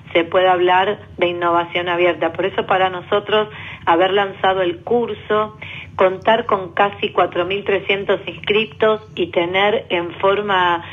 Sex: female